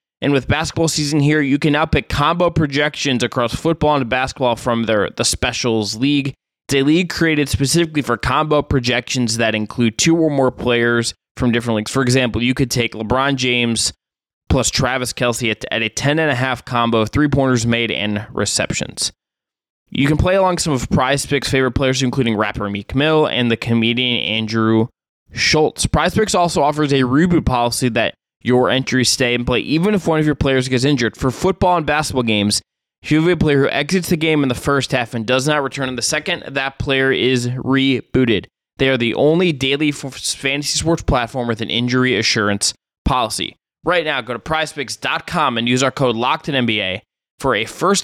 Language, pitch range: English, 120-145 Hz